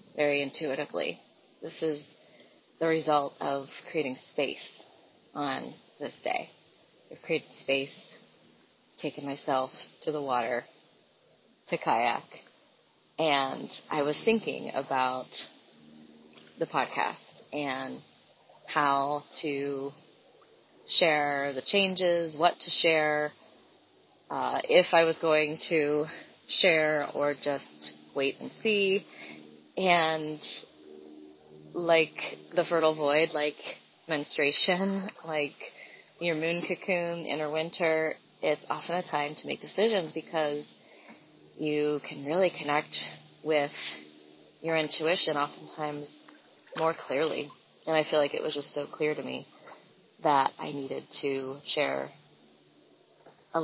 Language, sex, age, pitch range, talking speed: English, female, 30-49, 135-160 Hz, 110 wpm